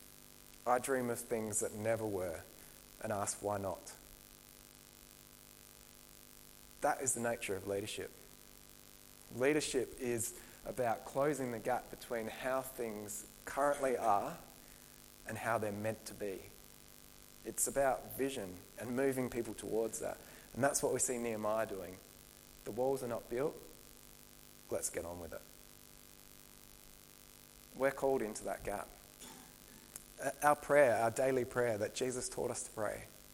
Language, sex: English, male